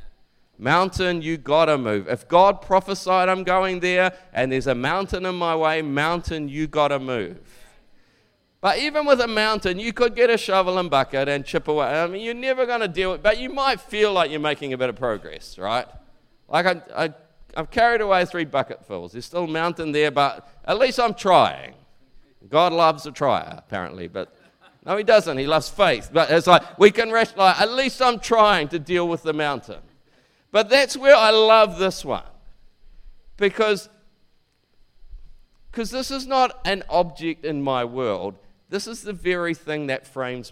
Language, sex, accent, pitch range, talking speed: English, male, Australian, 135-195 Hz, 185 wpm